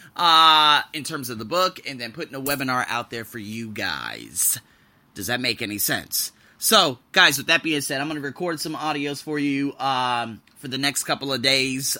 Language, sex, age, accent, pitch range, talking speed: English, male, 30-49, American, 115-145 Hz, 205 wpm